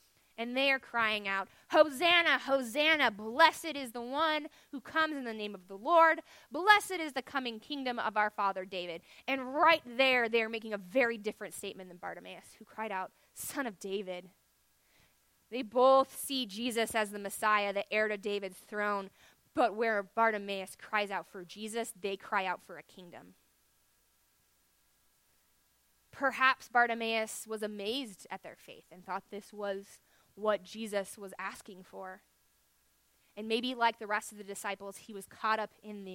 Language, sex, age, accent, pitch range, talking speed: English, female, 20-39, American, 185-230 Hz, 170 wpm